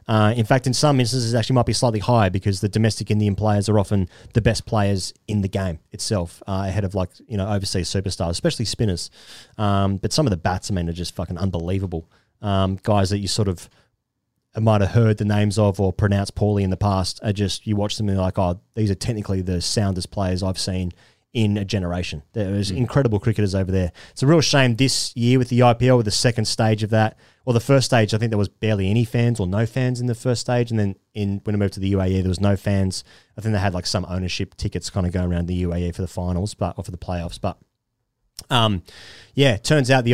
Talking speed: 250 wpm